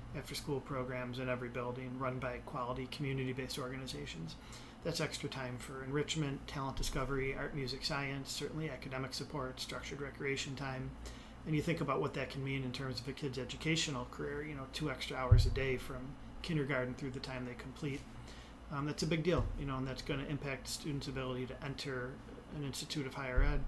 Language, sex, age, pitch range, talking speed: English, male, 30-49, 130-145 Hz, 195 wpm